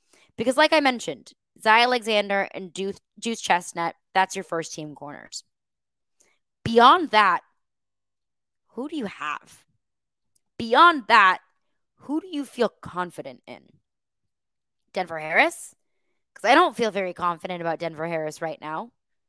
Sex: female